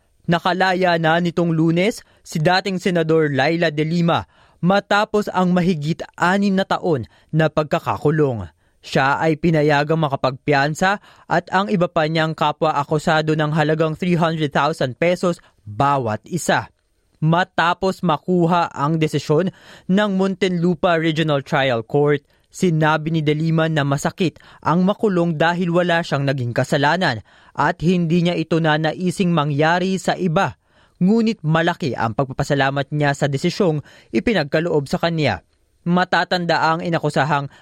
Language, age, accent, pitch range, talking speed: Filipino, 20-39, native, 150-180 Hz, 120 wpm